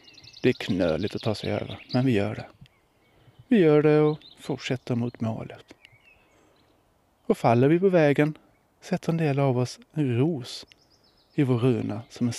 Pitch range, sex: 115-145 Hz, male